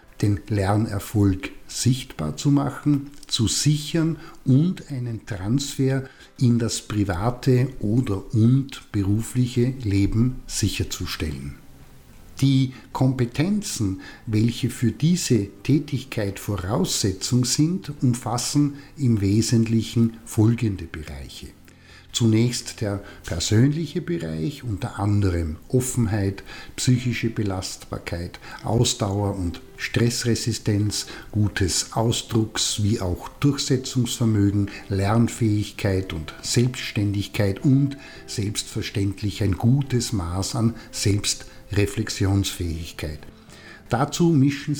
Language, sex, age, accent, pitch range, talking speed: German, male, 50-69, German, 100-130 Hz, 80 wpm